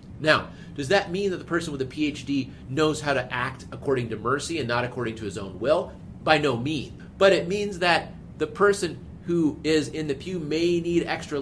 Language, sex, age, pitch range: English, male, 40-59, 120-160 Hz